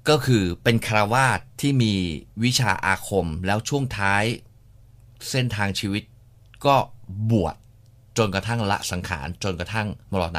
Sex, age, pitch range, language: male, 20-39, 105-120 Hz, Thai